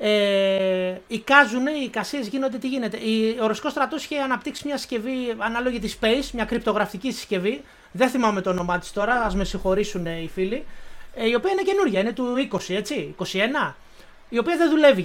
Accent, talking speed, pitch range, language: native, 175 wpm, 210-280 Hz, Greek